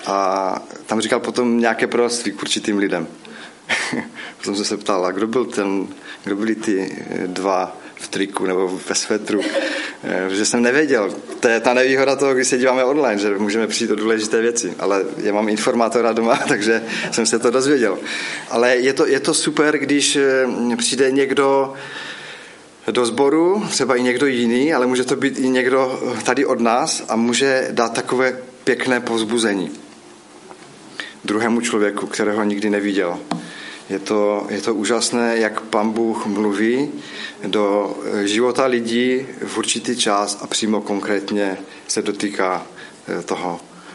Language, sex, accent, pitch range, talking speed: Czech, male, native, 105-125 Hz, 150 wpm